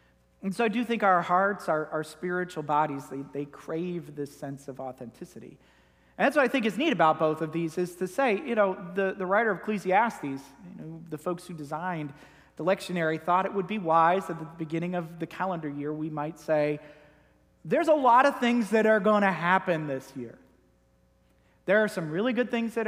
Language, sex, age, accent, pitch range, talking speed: English, male, 40-59, American, 135-200 Hz, 210 wpm